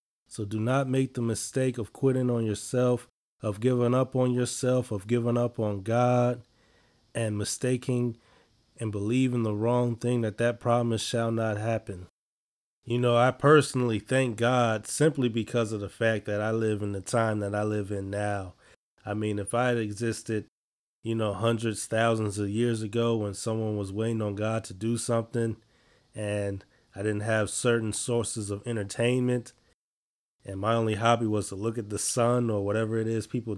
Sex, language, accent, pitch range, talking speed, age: male, English, American, 105-120 Hz, 180 wpm, 20-39